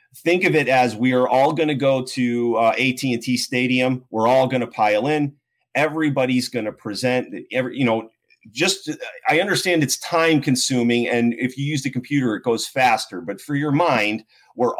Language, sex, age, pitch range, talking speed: English, male, 30-49, 120-145 Hz, 190 wpm